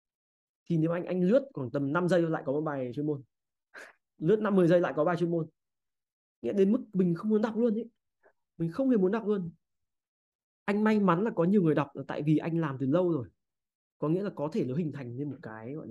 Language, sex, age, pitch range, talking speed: Vietnamese, male, 20-39, 130-170 Hz, 250 wpm